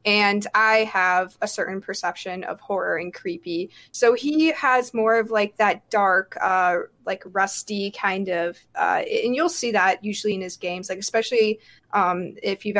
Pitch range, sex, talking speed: 190-225 Hz, female, 175 wpm